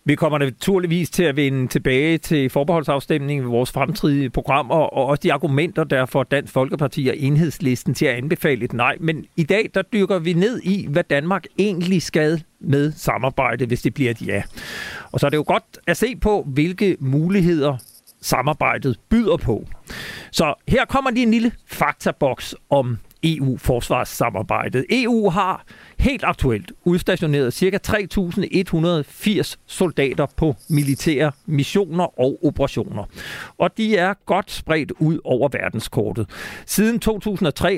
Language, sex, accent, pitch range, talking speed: Danish, male, native, 135-180 Hz, 150 wpm